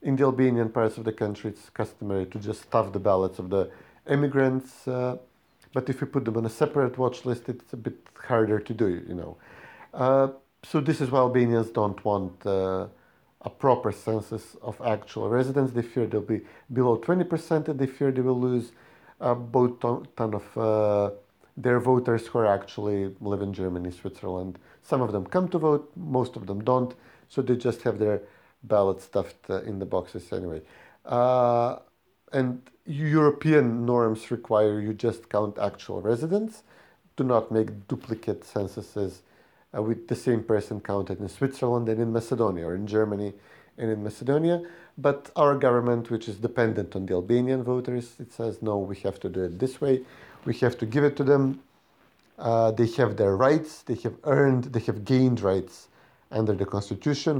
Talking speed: 180 wpm